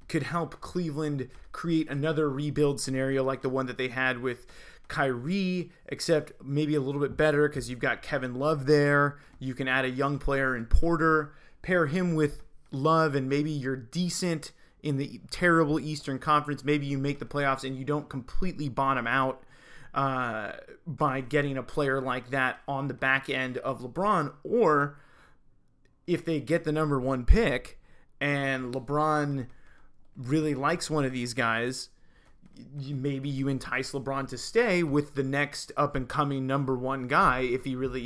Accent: American